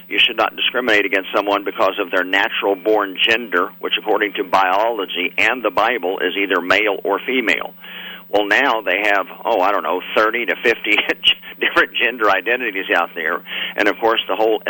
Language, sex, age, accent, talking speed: English, male, 50-69, American, 180 wpm